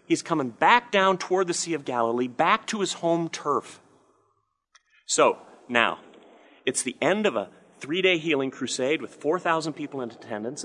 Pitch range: 145-195 Hz